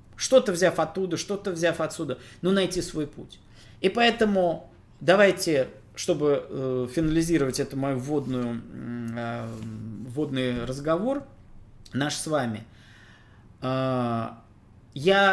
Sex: male